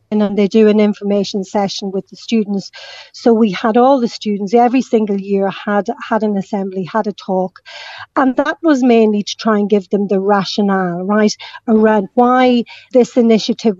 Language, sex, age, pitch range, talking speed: English, female, 40-59, 205-245 Hz, 180 wpm